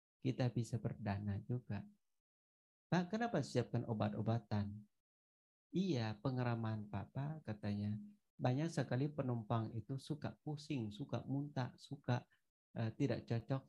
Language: Indonesian